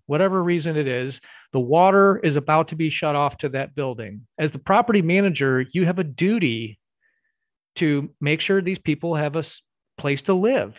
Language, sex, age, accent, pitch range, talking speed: English, male, 40-59, American, 145-180 Hz, 185 wpm